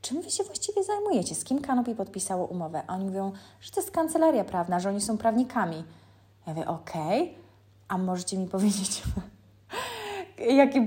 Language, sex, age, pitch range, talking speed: Polish, female, 20-39, 180-235 Hz, 170 wpm